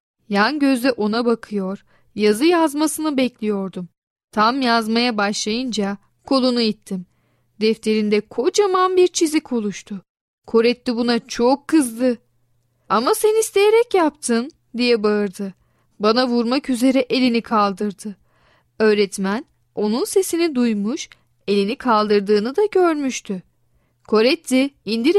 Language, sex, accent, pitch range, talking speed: Turkish, female, native, 210-270 Hz, 100 wpm